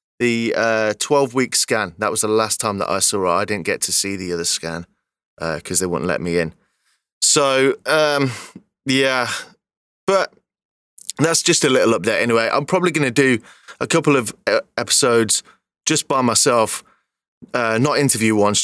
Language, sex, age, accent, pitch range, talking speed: English, male, 30-49, British, 105-135 Hz, 175 wpm